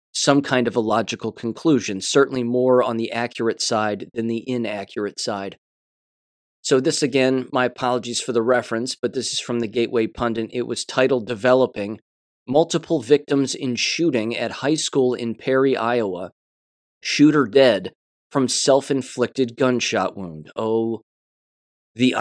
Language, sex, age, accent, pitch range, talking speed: English, male, 30-49, American, 110-135 Hz, 145 wpm